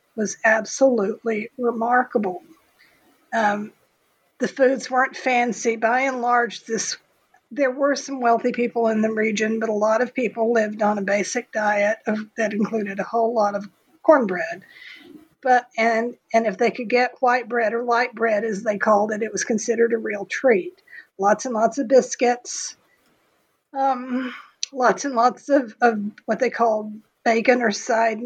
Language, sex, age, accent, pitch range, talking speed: English, female, 50-69, American, 215-250 Hz, 165 wpm